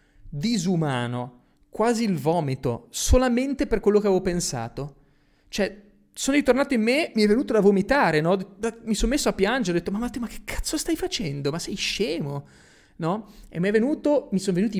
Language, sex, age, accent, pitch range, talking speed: Italian, male, 30-49, native, 135-200 Hz, 185 wpm